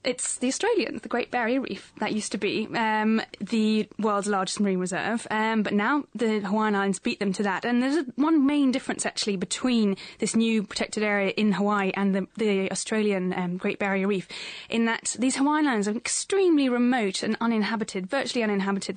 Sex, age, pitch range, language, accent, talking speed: female, 10-29, 195-240 Hz, English, British, 190 wpm